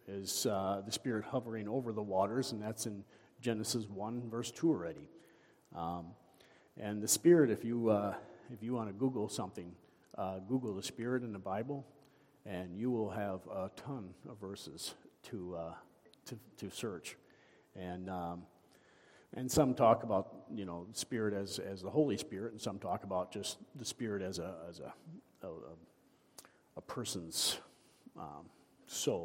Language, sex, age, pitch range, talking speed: English, male, 50-69, 95-120 Hz, 160 wpm